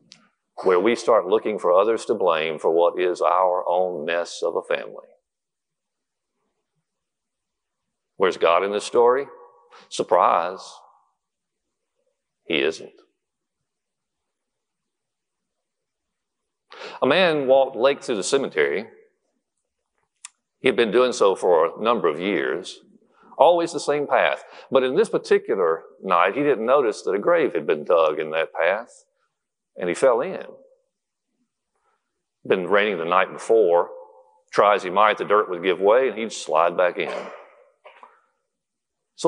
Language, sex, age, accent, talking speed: English, male, 50-69, American, 130 wpm